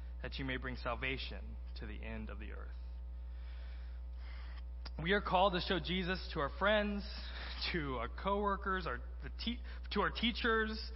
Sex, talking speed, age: male, 160 wpm, 20-39